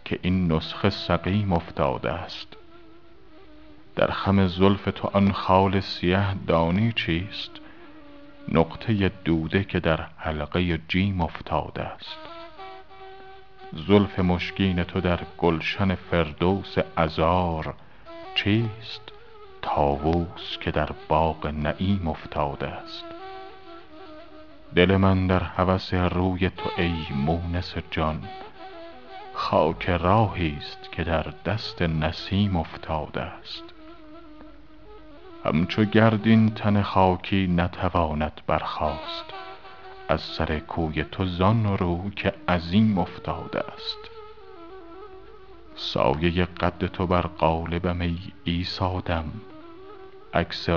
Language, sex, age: Persian, male, 50-69